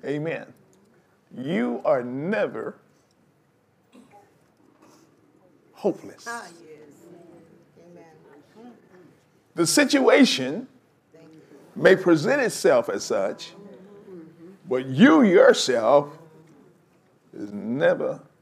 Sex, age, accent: male, 50-69, American